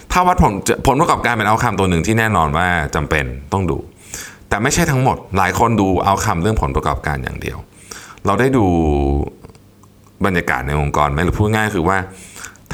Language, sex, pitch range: Thai, male, 80-100 Hz